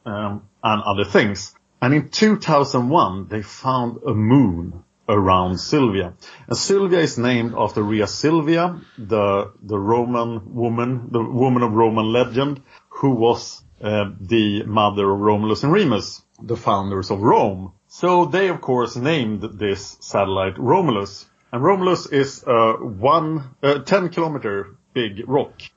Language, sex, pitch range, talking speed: English, male, 105-140 Hz, 140 wpm